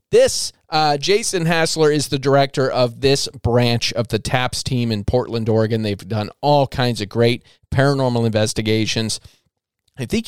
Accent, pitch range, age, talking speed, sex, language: American, 115-160 Hz, 30-49, 160 wpm, male, English